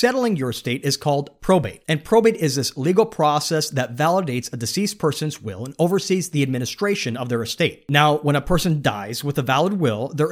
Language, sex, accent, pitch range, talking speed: English, male, American, 125-180 Hz, 205 wpm